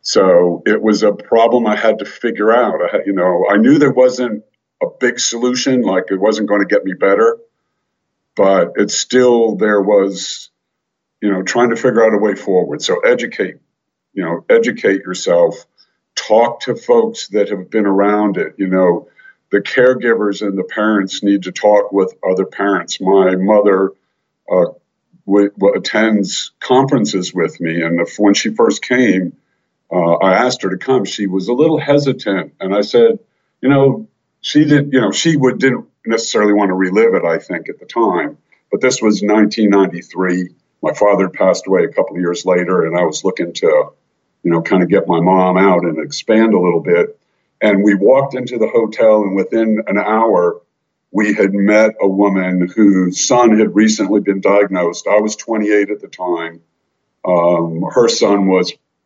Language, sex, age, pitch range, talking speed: English, male, 50-69, 95-125 Hz, 180 wpm